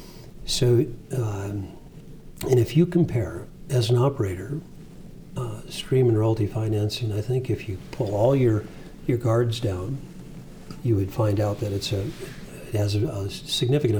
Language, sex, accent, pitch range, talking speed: English, male, American, 100-135 Hz, 155 wpm